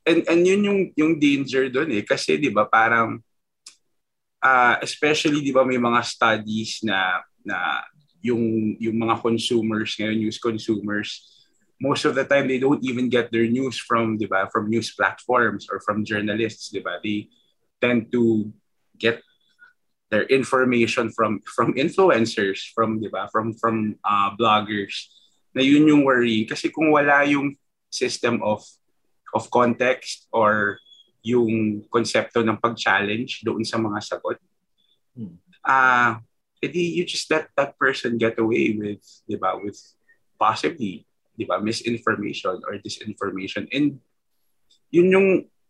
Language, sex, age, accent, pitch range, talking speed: English, male, 20-39, Filipino, 110-140 Hz, 130 wpm